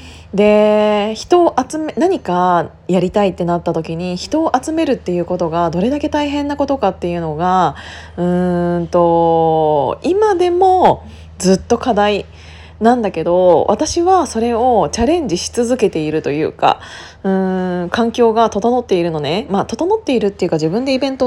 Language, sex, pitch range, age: Japanese, female, 175-250 Hz, 20-39